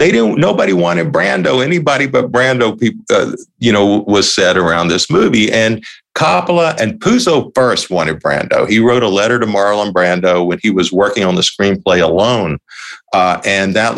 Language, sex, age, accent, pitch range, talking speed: English, male, 50-69, American, 100-130 Hz, 175 wpm